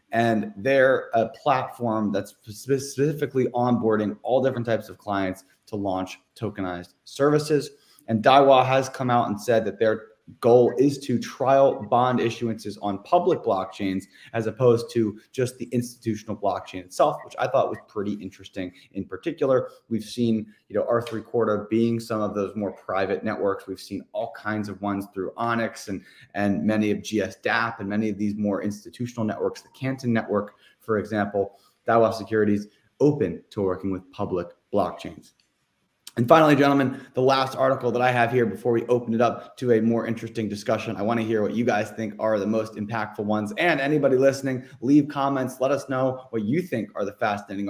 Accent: American